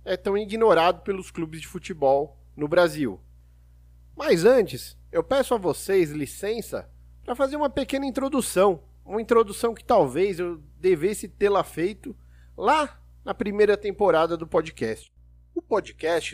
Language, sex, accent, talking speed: Portuguese, male, Brazilian, 135 wpm